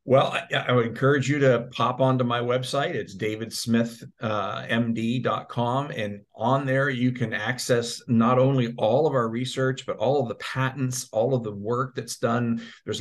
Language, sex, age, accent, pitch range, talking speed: English, male, 50-69, American, 115-130 Hz, 170 wpm